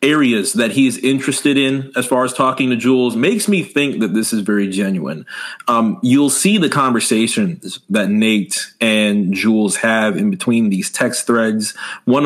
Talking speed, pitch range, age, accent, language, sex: 175 wpm, 110-150 Hz, 30-49, American, English, male